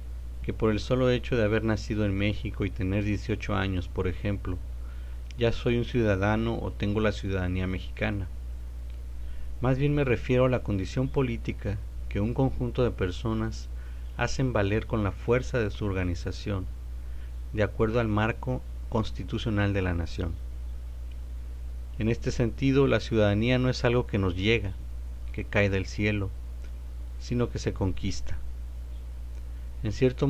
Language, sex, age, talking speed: Spanish, male, 50-69, 150 wpm